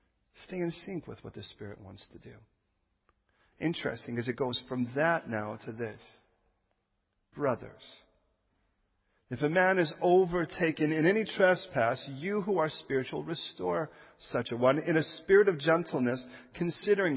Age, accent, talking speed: 40-59, American, 145 wpm